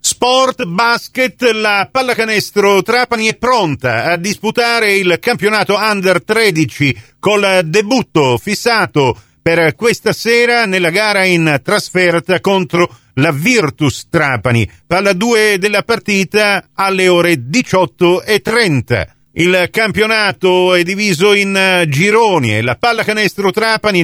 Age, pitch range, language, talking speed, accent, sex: 50-69, 155-210 Hz, Italian, 110 wpm, native, male